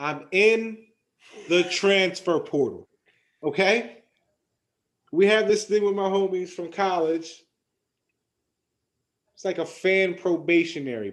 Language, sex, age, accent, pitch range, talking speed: English, male, 30-49, American, 140-210 Hz, 110 wpm